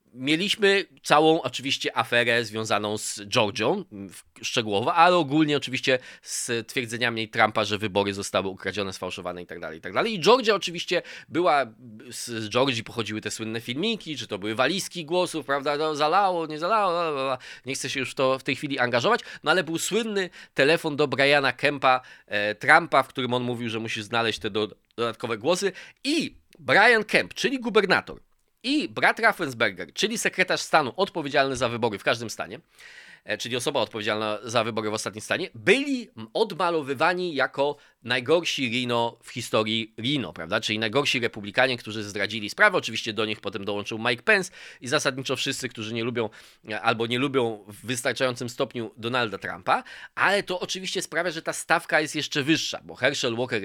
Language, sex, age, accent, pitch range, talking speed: Polish, male, 20-39, native, 110-160 Hz, 160 wpm